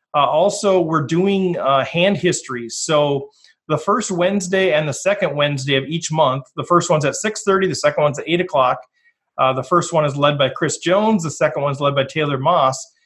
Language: English